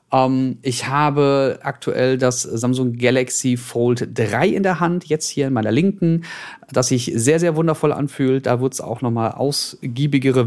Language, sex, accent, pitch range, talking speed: German, male, German, 115-165 Hz, 165 wpm